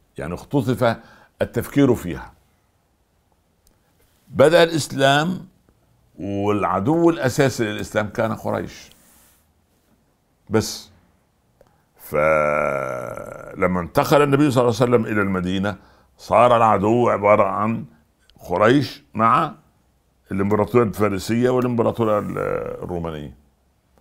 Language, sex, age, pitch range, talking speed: Arabic, male, 60-79, 90-115 Hz, 75 wpm